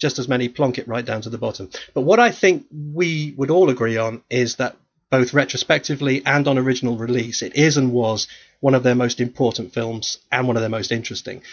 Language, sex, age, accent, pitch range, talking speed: English, male, 40-59, British, 115-140 Hz, 225 wpm